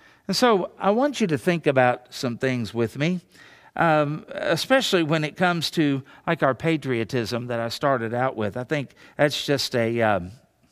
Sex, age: male, 50-69